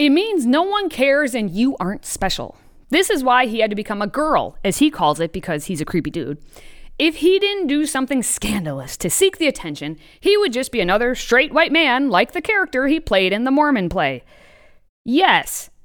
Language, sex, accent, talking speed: English, female, American, 210 wpm